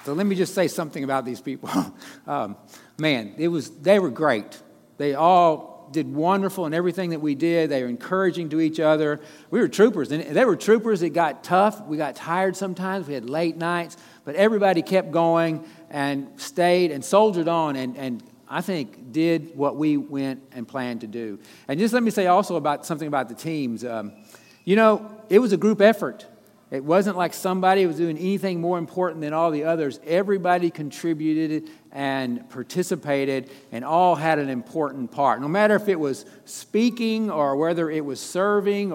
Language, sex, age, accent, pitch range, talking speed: English, male, 50-69, American, 140-185 Hz, 190 wpm